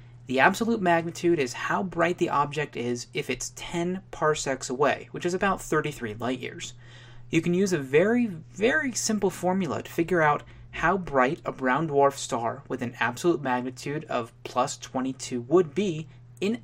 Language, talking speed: English, 170 wpm